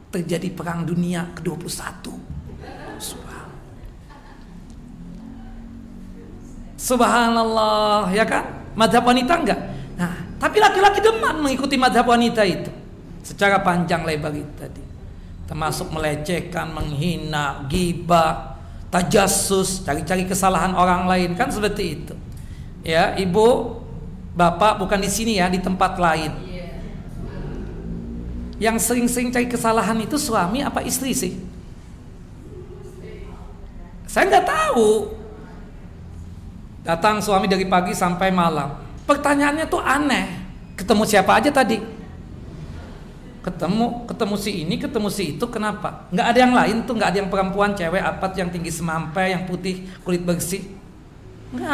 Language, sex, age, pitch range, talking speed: Indonesian, male, 50-69, 170-225 Hz, 115 wpm